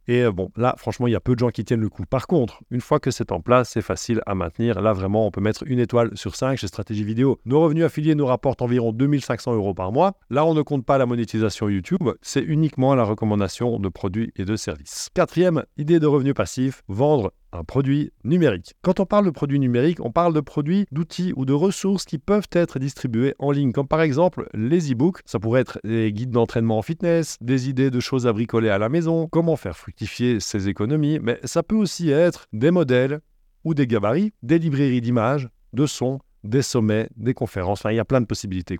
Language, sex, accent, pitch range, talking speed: French, male, French, 115-155 Hz, 230 wpm